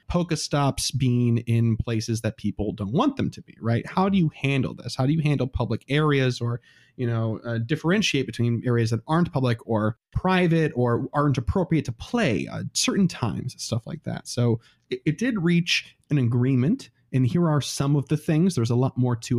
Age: 30-49